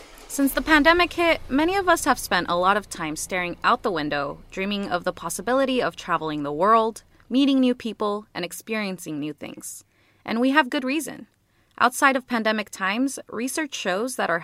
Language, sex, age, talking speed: English, female, 20-39, 185 wpm